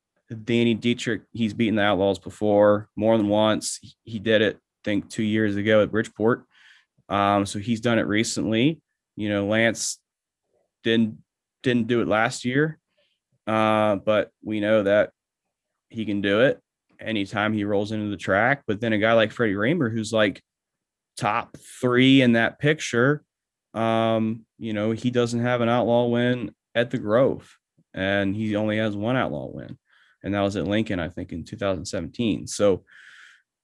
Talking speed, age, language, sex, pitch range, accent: 165 wpm, 20-39, English, male, 105-130 Hz, American